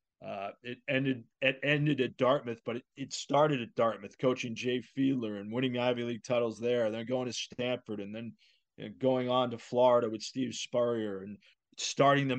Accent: American